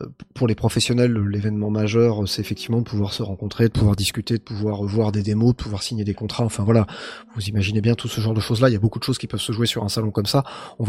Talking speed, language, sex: 275 wpm, French, male